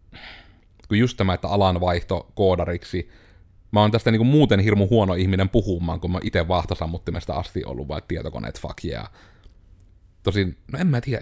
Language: Finnish